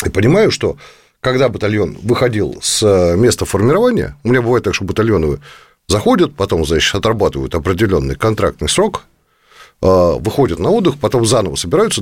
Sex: male